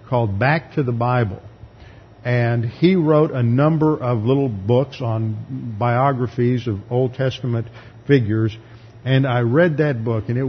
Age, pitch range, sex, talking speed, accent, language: 50-69, 115-145 Hz, male, 150 wpm, American, English